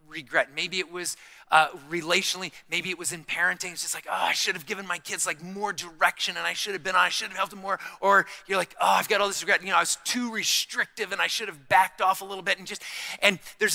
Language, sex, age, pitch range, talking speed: English, male, 40-59, 175-215 Hz, 280 wpm